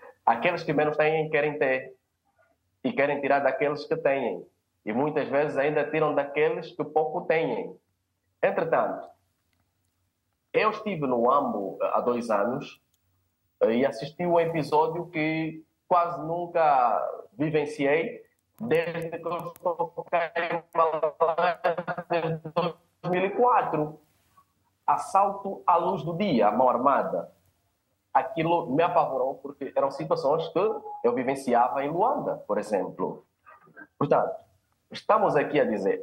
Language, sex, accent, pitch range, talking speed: Portuguese, male, Brazilian, 130-175 Hz, 110 wpm